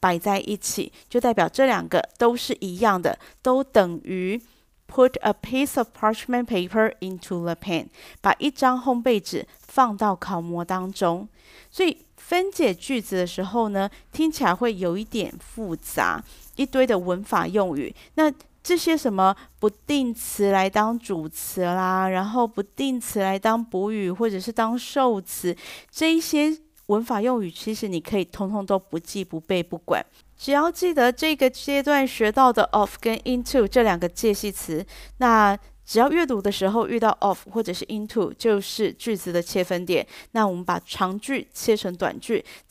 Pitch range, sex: 190-255 Hz, female